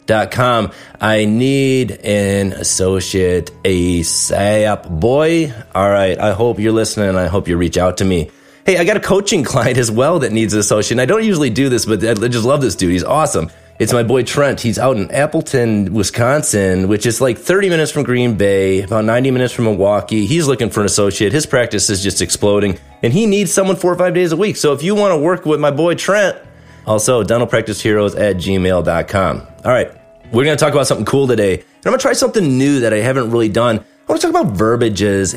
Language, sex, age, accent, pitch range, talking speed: English, male, 30-49, American, 95-135 Hz, 220 wpm